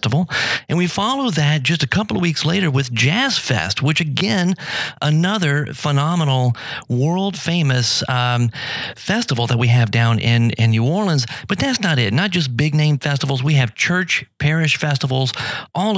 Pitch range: 125-165 Hz